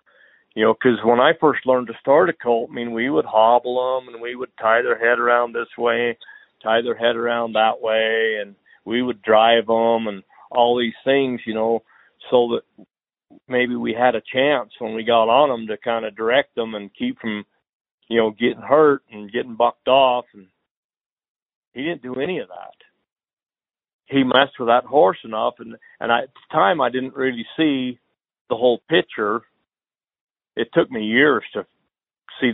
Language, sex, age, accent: English, male, 50-69, American